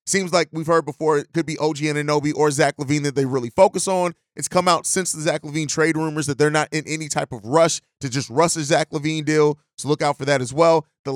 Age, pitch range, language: 30-49, 145-165 Hz, English